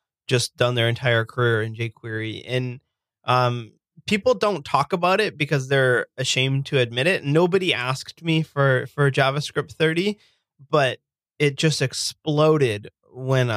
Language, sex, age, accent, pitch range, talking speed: English, male, 20-39, American, 120-150 Hz, 140 wpm